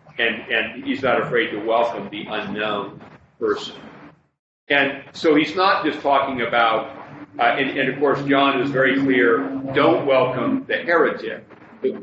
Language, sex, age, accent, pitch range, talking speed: English, male, 40-59, American, 105-140 Hz, 155 wpm